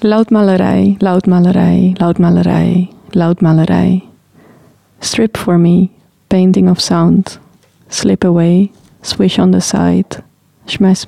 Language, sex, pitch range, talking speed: English, female, 175-200 Hz, 115 wpm